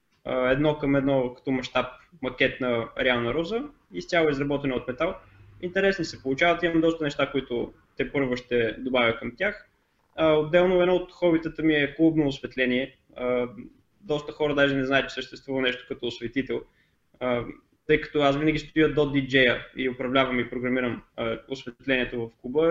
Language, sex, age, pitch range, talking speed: Bulgarian, male, 20-39, 125-150 Hz, 155 wpm